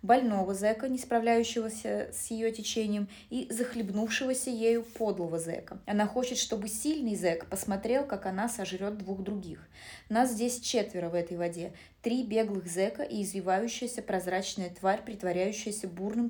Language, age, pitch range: Russian, 20-39, 190-235 Hz